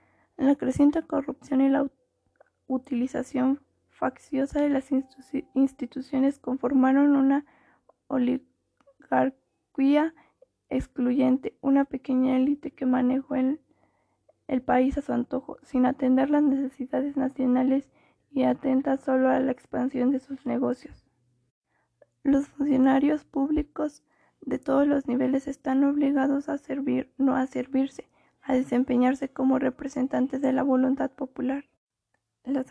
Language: Spanish